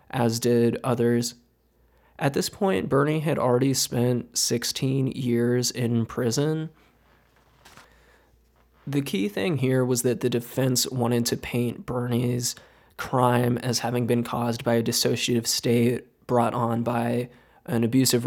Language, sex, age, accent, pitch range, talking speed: English, male, 20-39, American, 120-130 Hz, 130 wpm